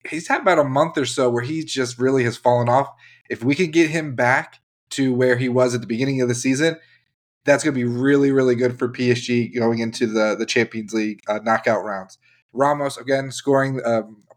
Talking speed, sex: 220 wpm, male